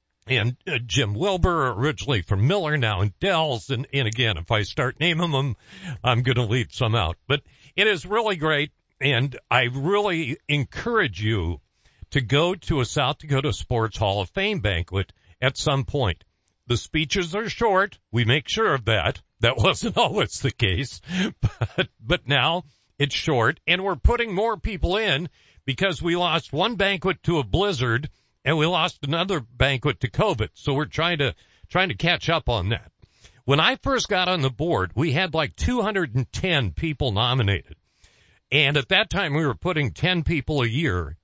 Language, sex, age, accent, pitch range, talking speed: English, male, 50-69, American, 115-170 Hz, 180 wpm